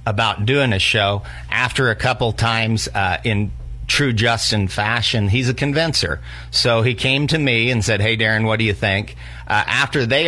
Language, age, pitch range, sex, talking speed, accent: English, 50-69, 95-125 Hz, male, 185 wpm, American